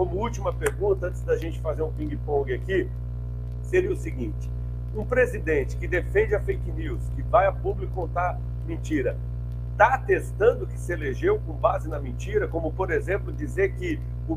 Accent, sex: Brazilian, male